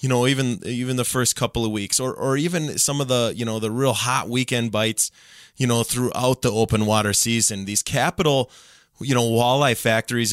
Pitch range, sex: 115-135 Hz, male